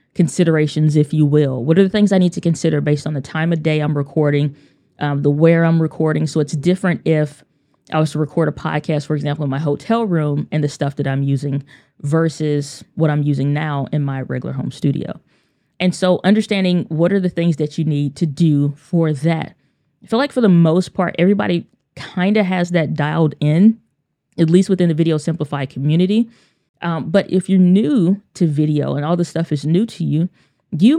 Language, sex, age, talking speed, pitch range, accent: English, female, 20-39, 210 wpm, 150-185 Hz, American